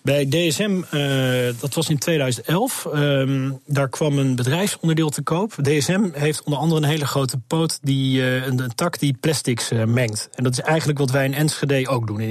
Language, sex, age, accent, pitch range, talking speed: Dutch, male, 40-59, Dutch, 125-150 Hz, 205 wpm